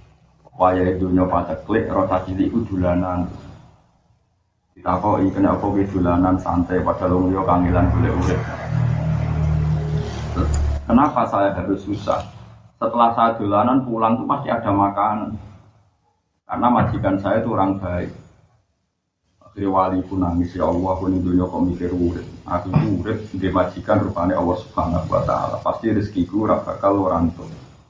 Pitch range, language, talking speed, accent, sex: 90-110 Hz, Indonesian, 125 wpm, native, male